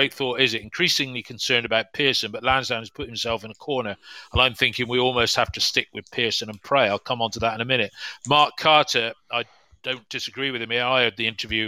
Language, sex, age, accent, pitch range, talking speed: English, male, 40-59, British, 110-130 Hz, 240 wpm